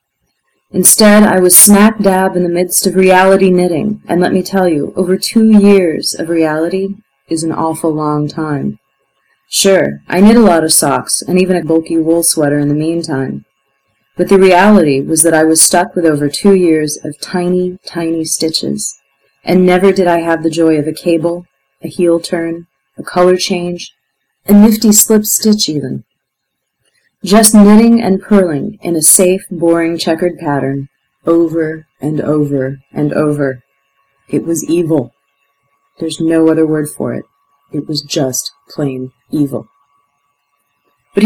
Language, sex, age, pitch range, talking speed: English, female, 30-49, 145-185 Hz, 160 wpm